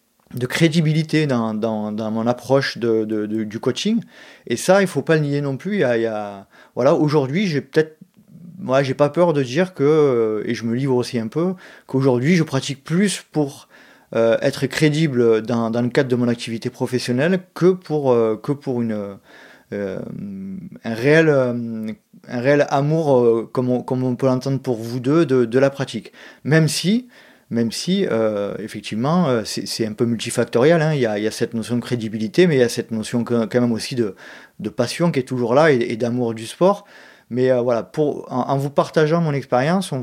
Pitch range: 120-160 Hz